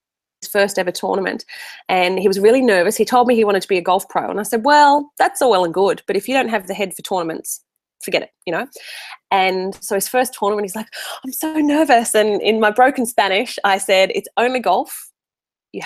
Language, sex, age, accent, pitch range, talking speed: English, female, 20-39, Australian, 195-235 Hz, 230 wpm